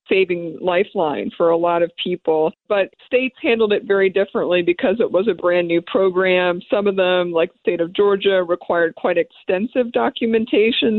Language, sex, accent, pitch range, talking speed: English, female, American, 175-215 Hz, 175 wpm